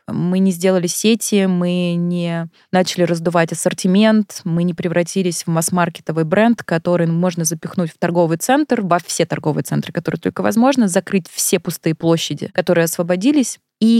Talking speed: 150 wpm